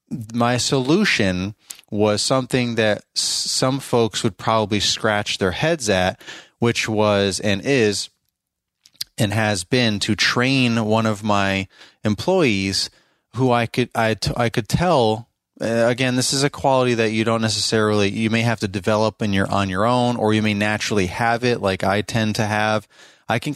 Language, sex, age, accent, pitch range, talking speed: English, male, 30-49, American, 105-120 Hz, 175 wpm